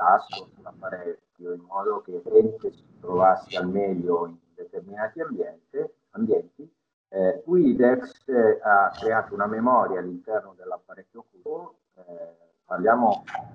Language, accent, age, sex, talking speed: Italian, native, 40-59, male, 95 wpm